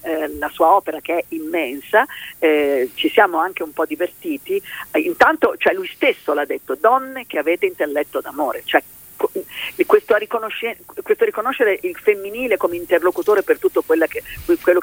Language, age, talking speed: Italian, 40-59, 160 wpm